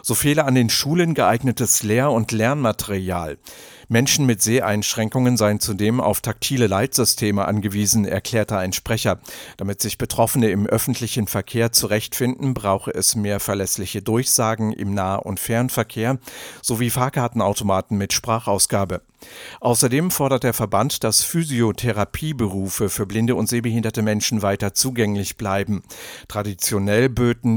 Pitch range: 100-125 Hz